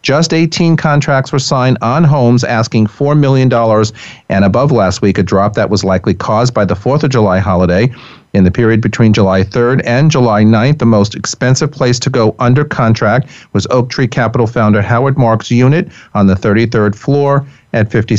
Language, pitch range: English, 100-130 Hz